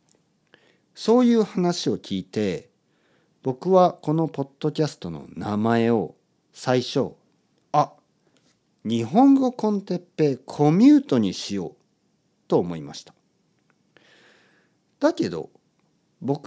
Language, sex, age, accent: Japanese, male, 50-69, native